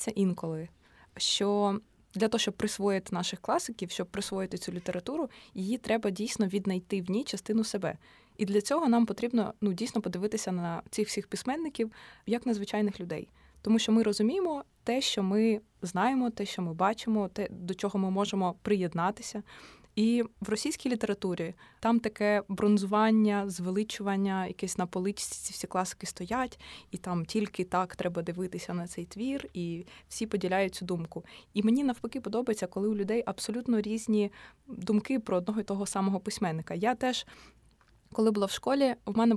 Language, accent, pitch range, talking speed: Ukrainian, native, 190-235 Hz, 160 wpm